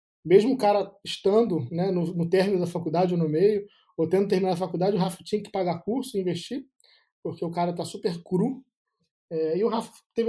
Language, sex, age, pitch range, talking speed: Portuguese, male, 20-39, 170-210 Hz, 205 wpm